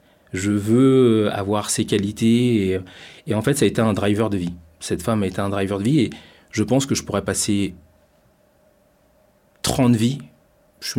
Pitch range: 95-115 Hz